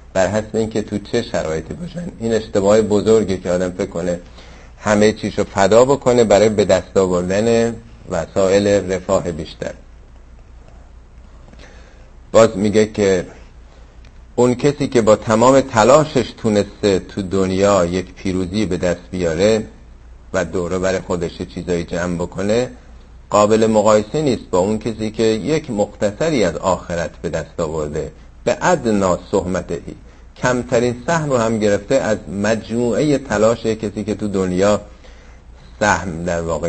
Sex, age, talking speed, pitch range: male, 50-69, 135 wpm, 90-120 Hz